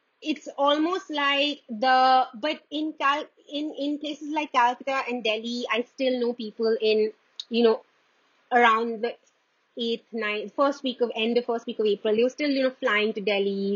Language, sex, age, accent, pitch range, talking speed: English, female, 30-49, Indian, 200-245 Hz, 185 wpm